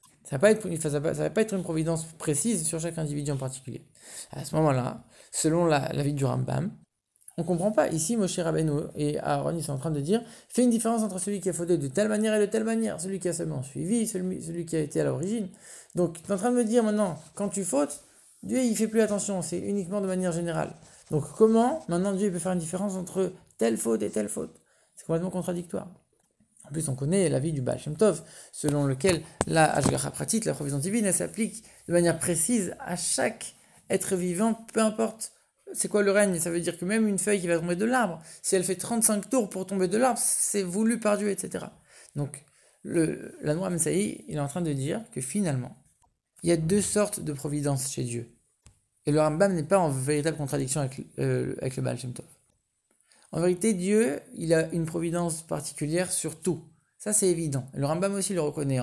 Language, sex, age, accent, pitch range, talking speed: English, male, 20-39, French, 150-205 Hz, 220 wpm